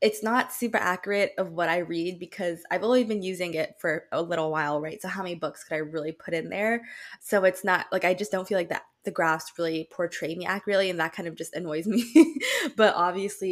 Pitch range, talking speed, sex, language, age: 165-205 Hz, 240 wpm, female, English, 20-39